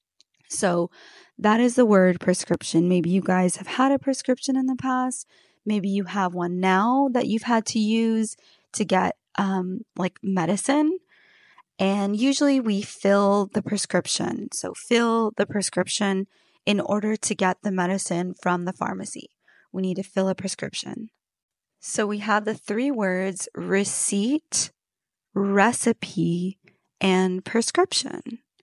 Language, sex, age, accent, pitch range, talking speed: English, female, 20-39, American, 190-260 Hz, 140 wpm